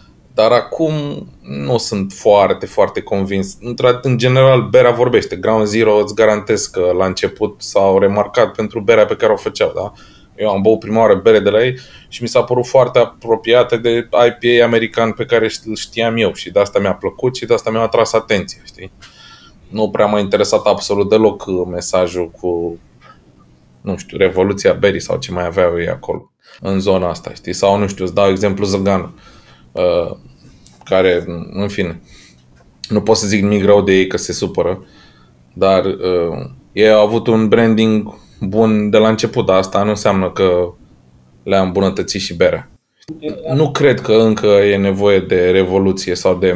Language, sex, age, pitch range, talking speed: Romanian, male, 20-39, 95-115 Hz, 170 wpm